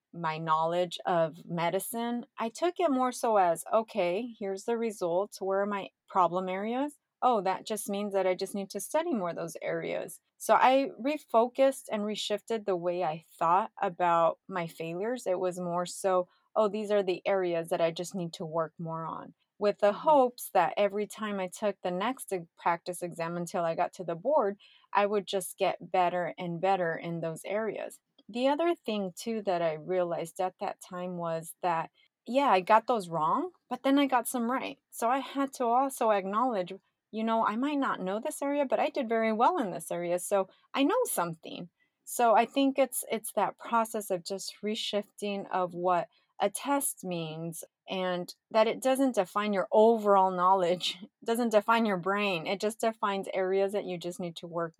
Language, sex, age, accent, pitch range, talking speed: English, female, 30-49, American, 180-230 Hz, 195 wpm